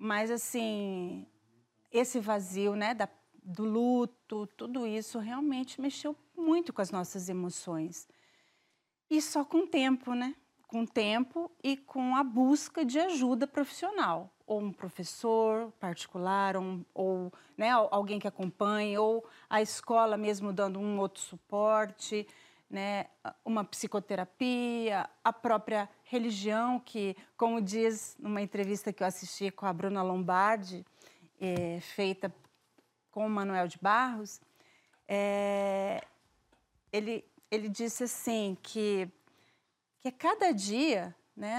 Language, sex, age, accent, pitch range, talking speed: Portuguese, female, 30-49, Brazilian, 200-250 Hz, 125 wpm